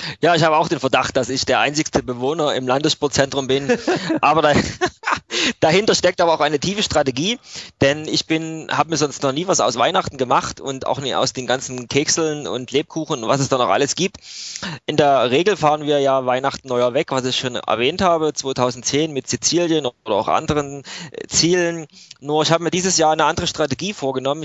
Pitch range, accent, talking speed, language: 130-155 Hz, German, 200 wpm, German